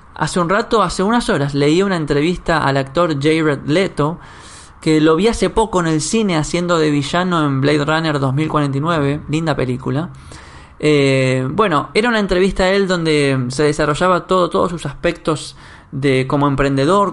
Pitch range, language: 145-185 Hz, English